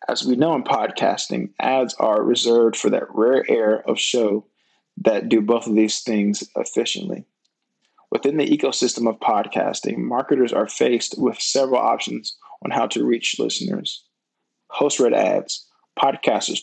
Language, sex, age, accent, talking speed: English, male, 20-39, American, 150 wpm